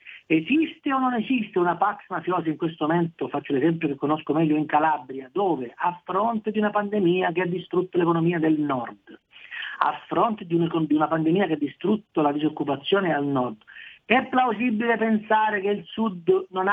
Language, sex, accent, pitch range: Italian, male, native, 145-200 Hz